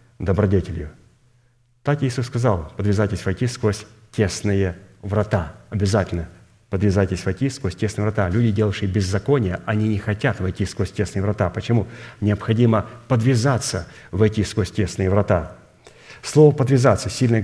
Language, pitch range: Russian, 100-120 Hz